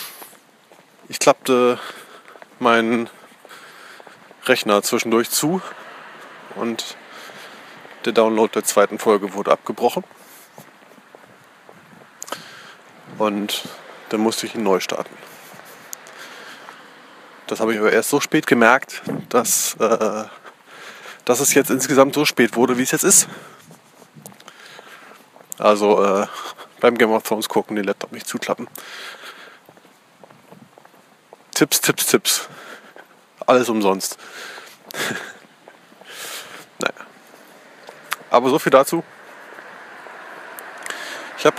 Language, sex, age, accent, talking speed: German, male, 20-39, German, 90 wpm